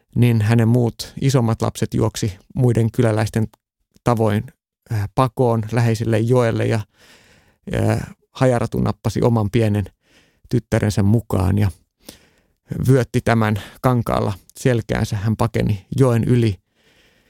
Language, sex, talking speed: Finnish, male, 100 wpm